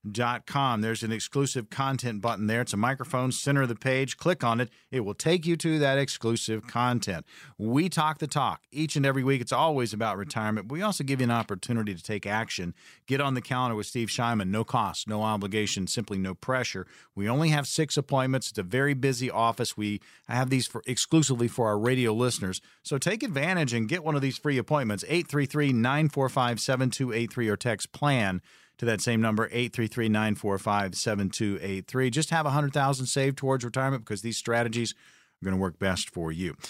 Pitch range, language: 110-145 Hz, English